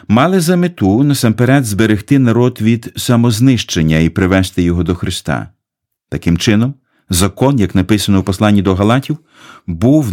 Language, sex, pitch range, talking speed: Ukrainian, male, 95-120 Hz, 135 wpm